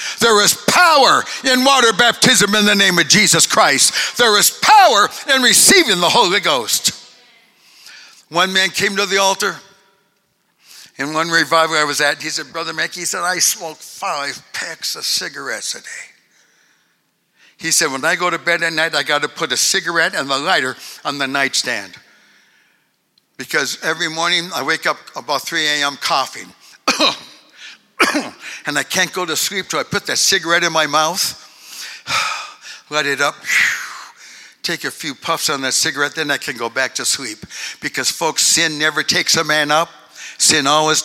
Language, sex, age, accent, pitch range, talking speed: English, male, 60-79, American, 155-255 Hz, 175 wpm